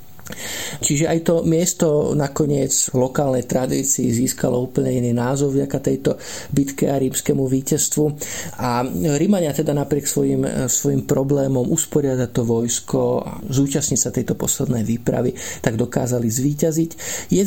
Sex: male